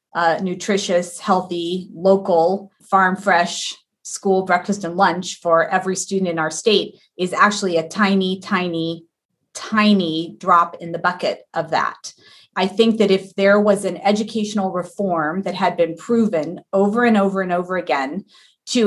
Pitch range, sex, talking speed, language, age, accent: 180-210 Hz, female, 150 wpm, English, 30-49, American